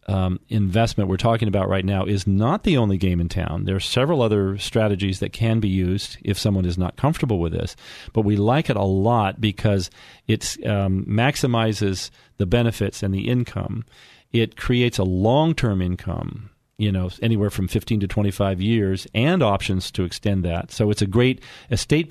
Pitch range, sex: 95-115 Hz, male